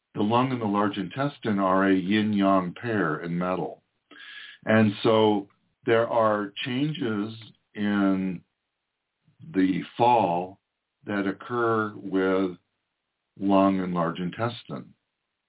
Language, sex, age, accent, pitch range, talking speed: English, male, 60-79, American, 95-115 Hz, 105 wpm